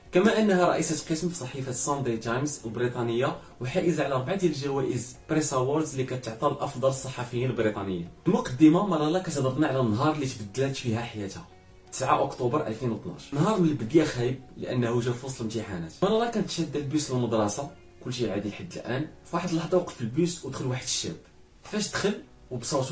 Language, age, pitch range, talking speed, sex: Arabic, 30-49, 115-155 Hz, 160 wpm, male